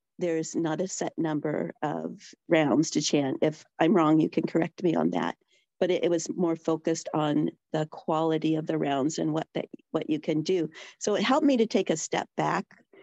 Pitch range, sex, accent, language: 150-165 Hz, female, American, English